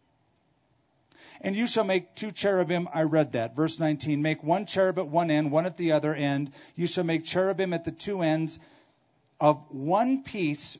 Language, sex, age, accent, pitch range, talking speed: English, male, 40-59, American, 145-195 Hz, 185 wpm